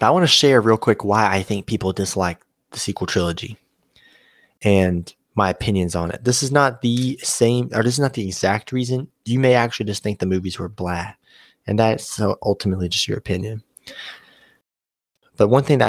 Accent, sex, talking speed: American, male, 195 wpm